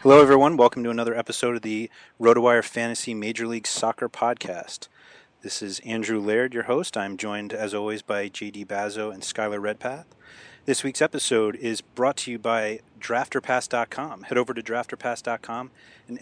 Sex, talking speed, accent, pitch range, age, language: male, 165 wpm, American, 105-125 Hz, 30-49, English